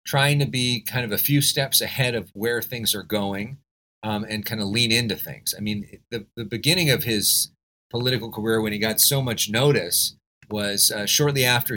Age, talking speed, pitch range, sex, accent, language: 40-59, 205 wpm, 100-140 Hz, male, American, English